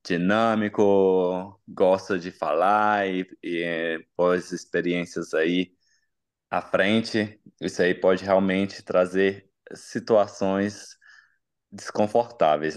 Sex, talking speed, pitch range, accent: male, 85 wpm, 90-110 Hz, Brazilian